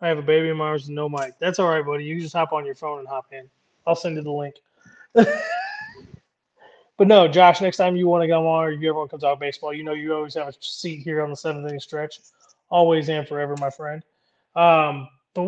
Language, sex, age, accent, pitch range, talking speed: English, male, 20-39, American, 150-190 Hz, 260 wpm